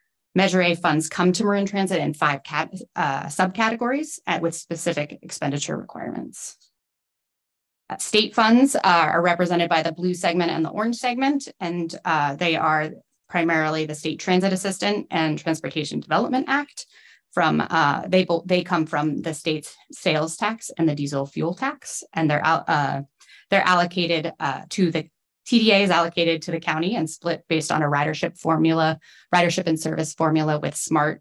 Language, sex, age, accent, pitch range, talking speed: English, female, 30-49, American, 150-185 Hz, 170 wpm